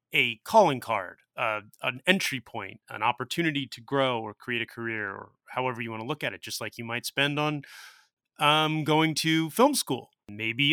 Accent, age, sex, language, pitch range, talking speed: American, 30-49, male, English, 115-165 Hz, 195 wpm